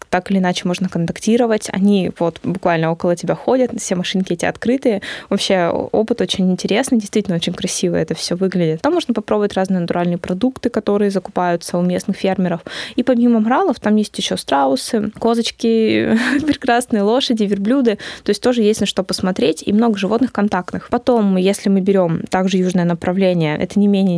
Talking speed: 170 wpm